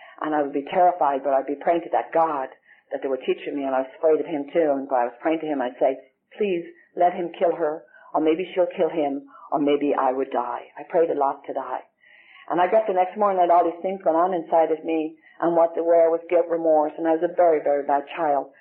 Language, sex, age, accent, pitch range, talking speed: English, female, 50-69, American, 145-175 Hz, 275 wpm